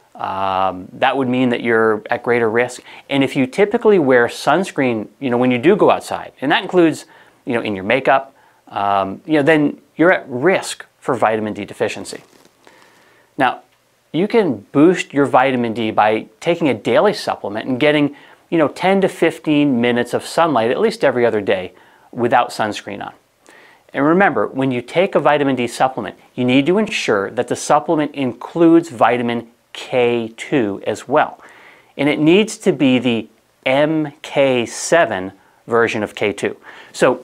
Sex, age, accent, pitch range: male, 30-49, American, 120-155 Hz